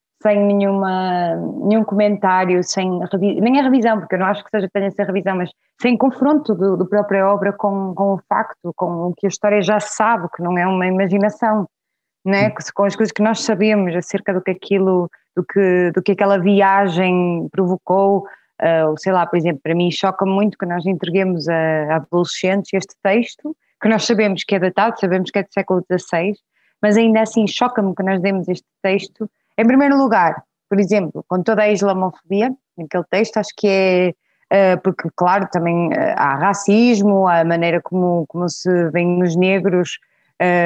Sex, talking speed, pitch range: female, 185 wpm, 180-210 Hz